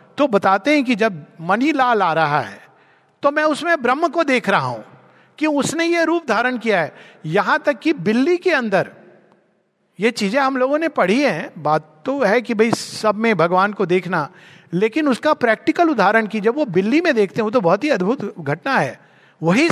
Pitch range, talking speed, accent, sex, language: 195-290 Hz, 200 wpm, native, male, Hindi